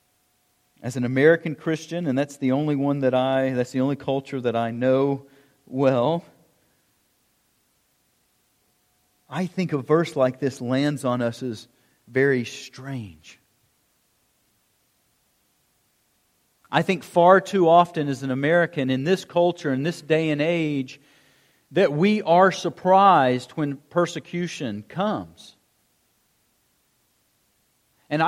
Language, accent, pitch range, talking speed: English, American, 125-170 Hz, 115 wpm